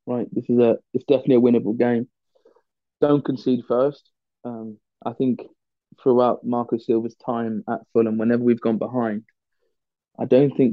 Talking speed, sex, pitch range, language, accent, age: 155 wpm, male, 110-120 Hz, English, British, 20-39